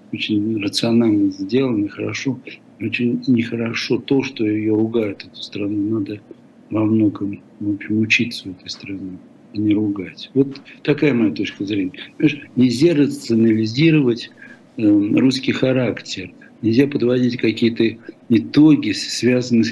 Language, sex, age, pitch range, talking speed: Russian, male, 60-79, 110-140 Hz, 125 wpm